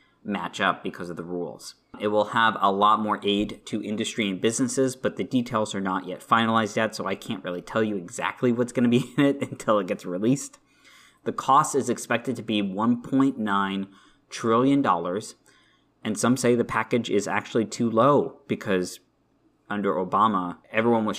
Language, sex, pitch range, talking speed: English, male, 95-120 Hz, 185 wpm